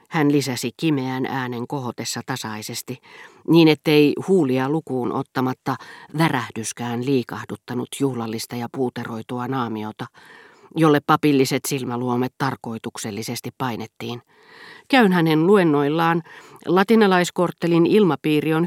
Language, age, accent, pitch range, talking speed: Finnish, 40-59, native, 125-155 Hz, 90 wpm